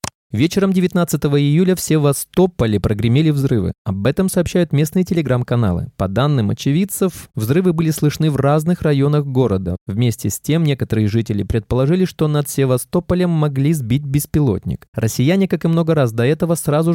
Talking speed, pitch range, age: 150 wpm, 115-165 Hz, 20-39